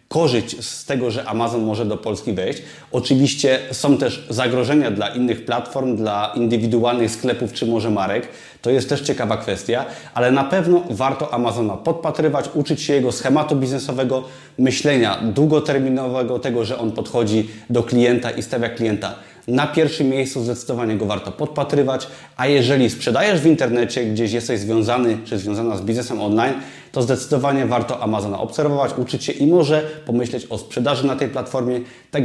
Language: Polish